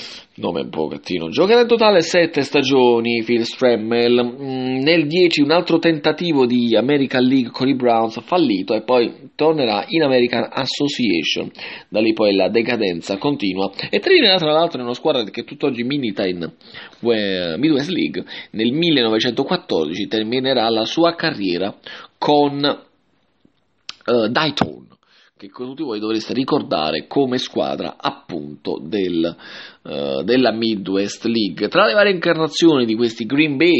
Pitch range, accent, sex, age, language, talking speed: 115-165 Hz, Italian, male, 30-49, English, 135 wpm